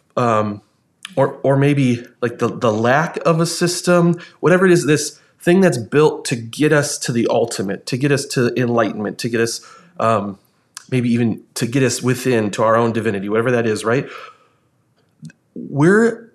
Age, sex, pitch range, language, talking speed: 30-49, male, 125-175 Hz, English, 175 wpm